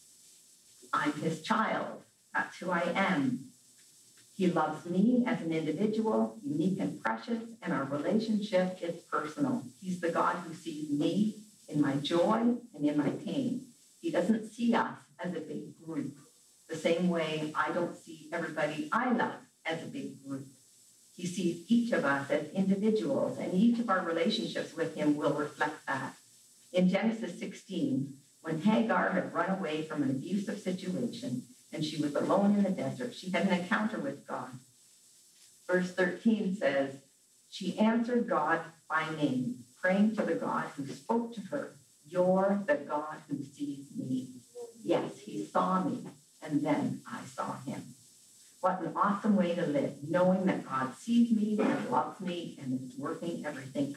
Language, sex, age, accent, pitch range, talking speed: English, female, 50-69, American, 150-215 Hz, 160 wpm